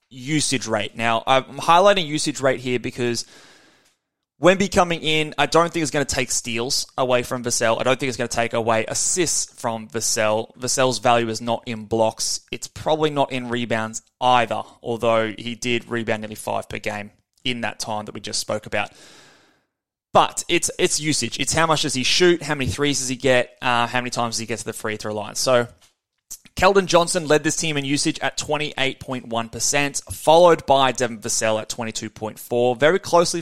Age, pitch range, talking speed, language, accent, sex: 20-39, 115-145 Hz, 195 wpm, English, Australian, male